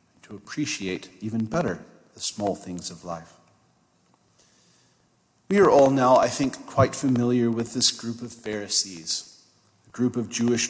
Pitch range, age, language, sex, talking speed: 105-130 Hz, 40-59, English, male, 145 wpm